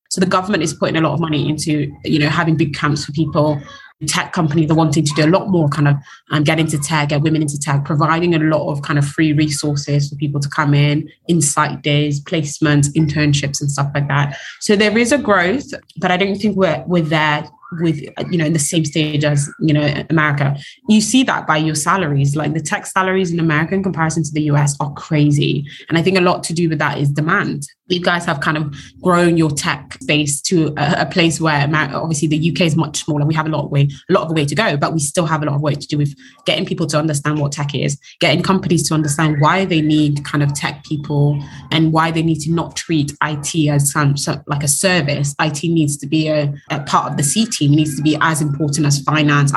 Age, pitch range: 20-39, 145-165 Hz